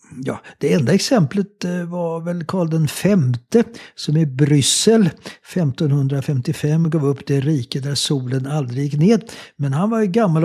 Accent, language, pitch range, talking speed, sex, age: Swedish, English, 130-175 Hz, 150 wpm, male, 60-79